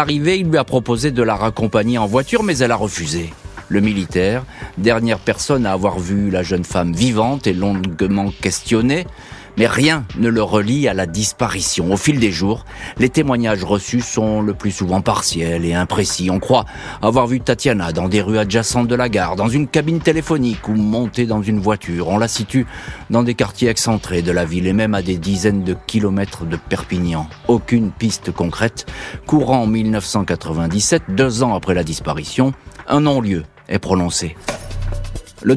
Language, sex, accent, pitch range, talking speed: French, male, French, 90-120 Hz, 180 wpm